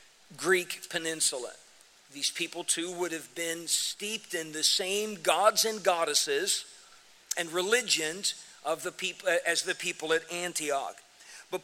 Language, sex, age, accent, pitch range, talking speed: English, male, 50-69, American, 175-220 Hz, 135 wpm